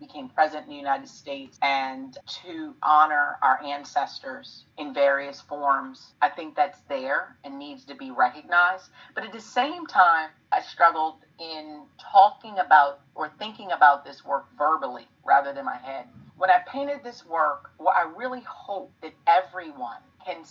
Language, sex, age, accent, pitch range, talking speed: English, female, 40-59, American, 150-190 Hz, 160 wpm